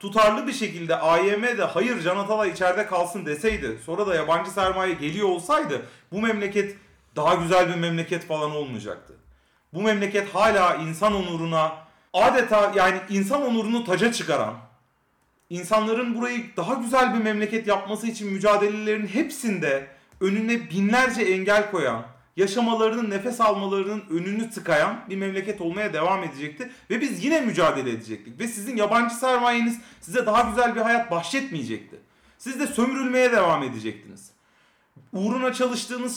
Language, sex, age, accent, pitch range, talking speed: Turkish, male, 40-59, native, 180-235 Hz, 135 wpm